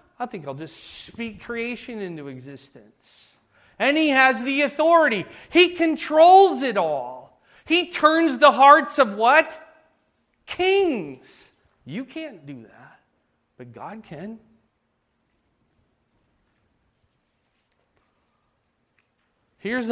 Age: 40-59